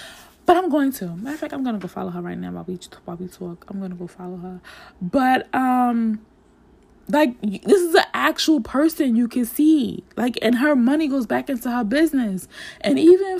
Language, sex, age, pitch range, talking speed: English, female, 20-39, 220-315 Hz, 195 wpm